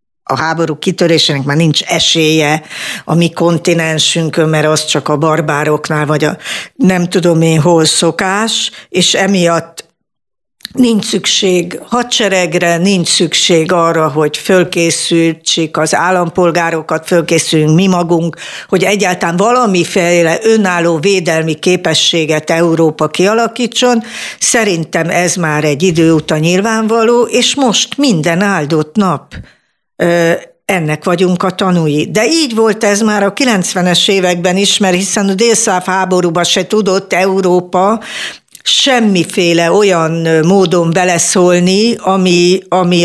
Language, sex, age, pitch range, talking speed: Hungarian, female, 60-79, 160-195 Hz, 115 wpm